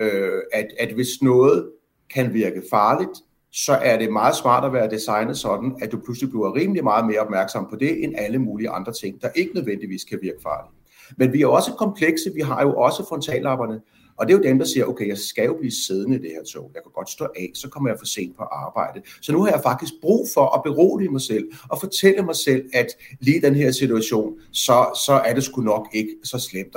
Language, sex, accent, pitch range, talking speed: Danish, male, native, 110-140 Hz, 235 wpm